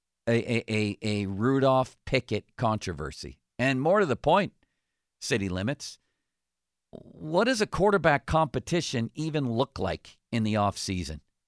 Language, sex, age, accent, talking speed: English, male, 50-69, American, 120 wpm